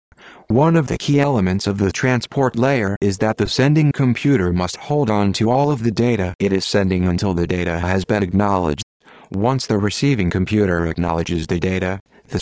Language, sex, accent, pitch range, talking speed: English, male, American, 95-120 Hz, 190 wpm